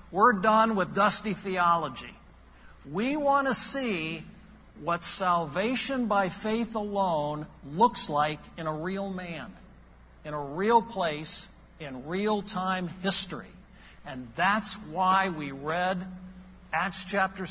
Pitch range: 160-210 Hz